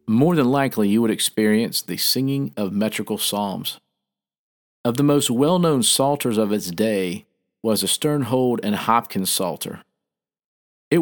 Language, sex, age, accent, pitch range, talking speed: English, male, 50-69, American, 100-135 Hz, 140 wpm